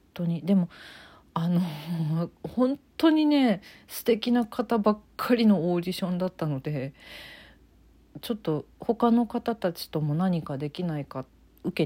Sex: female